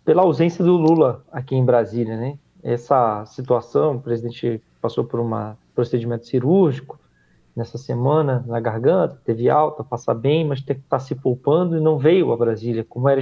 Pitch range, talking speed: 115-140 Hz, 180 wpm